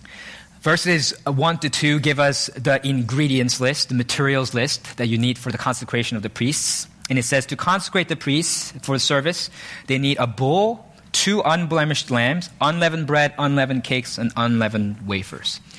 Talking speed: 170 wpm